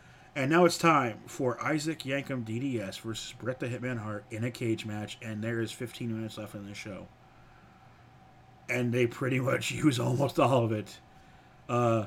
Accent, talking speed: American, 180 wpm